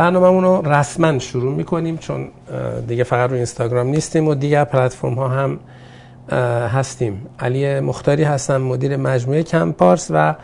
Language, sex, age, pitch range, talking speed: Persian, male, 50-69, 115-140 Hz, 140 wpm